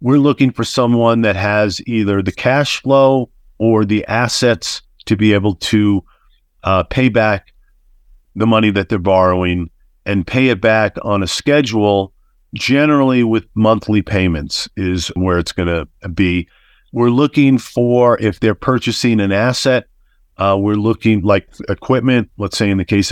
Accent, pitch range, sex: American, 100-120 Hz, male